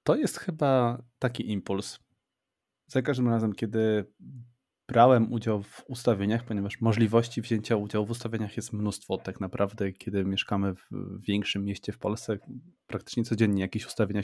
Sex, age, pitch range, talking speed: male, 20-39, 100-115 Hz, 145 wpm